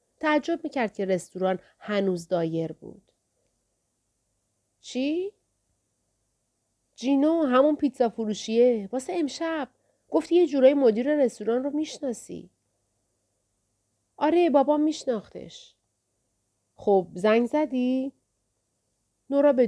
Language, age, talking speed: Persian, 40-59, 90 wpm